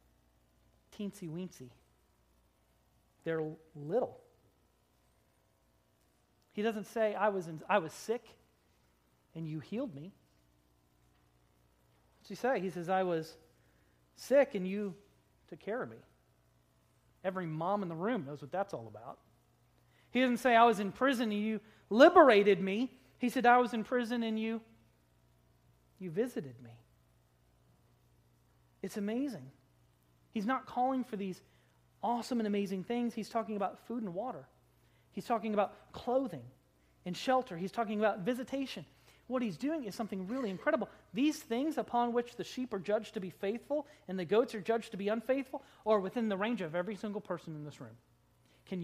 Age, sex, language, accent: 40-59, male, English, American